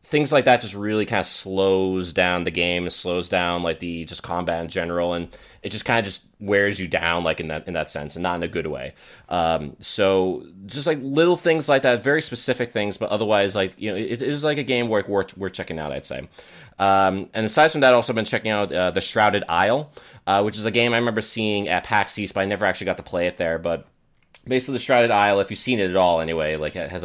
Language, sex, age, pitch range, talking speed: English, male, 30-49, 90-110 Hz, 260 wpm